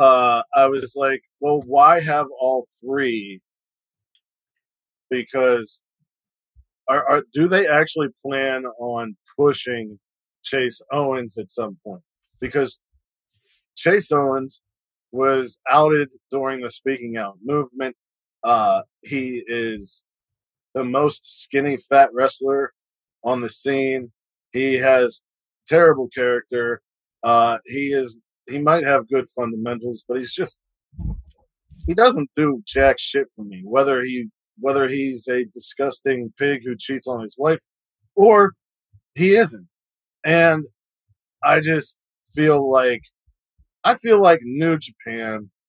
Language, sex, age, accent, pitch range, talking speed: English, male, 40-59, American, 120-140 Hz, 120 wpm